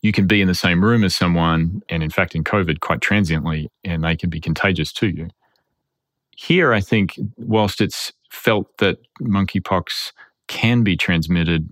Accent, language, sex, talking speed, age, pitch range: Australian, English, male, 175 wpm, 30-49, 80-95 Hz